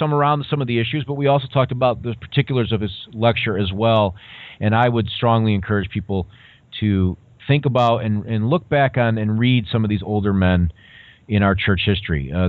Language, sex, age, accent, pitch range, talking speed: English, male, 40-59, American, 90-110 Hz, 210 wpm